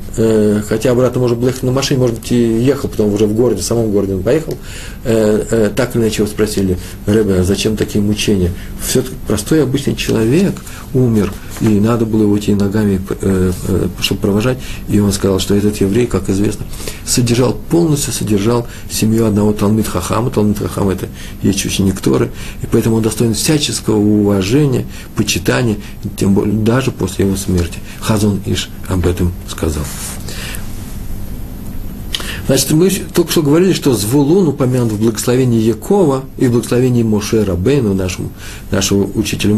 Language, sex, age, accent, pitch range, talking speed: Russian, male, 50-69, native, 100-125 Hz, 145 wpm